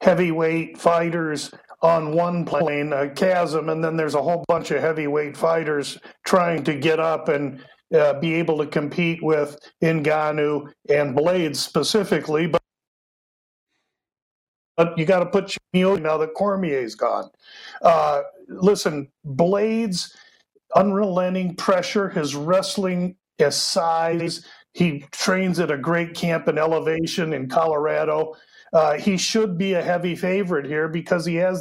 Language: English